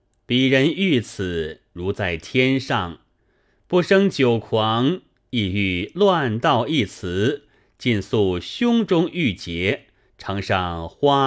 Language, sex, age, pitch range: Chinese, male, 30-49, 100-135 Hz